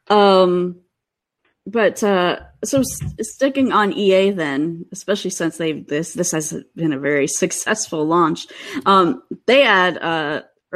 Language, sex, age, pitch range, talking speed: English, female, 30-49, 155-195 Hz, 135 wpm